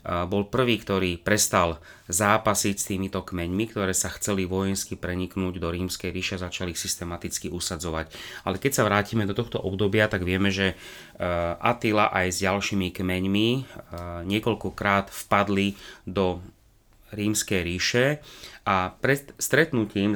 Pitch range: 95-105 Hz